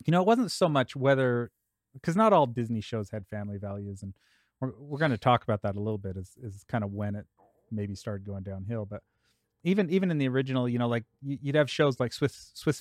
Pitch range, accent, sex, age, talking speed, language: 105-130 Hz, American, male, 30-49, 240 wpm, English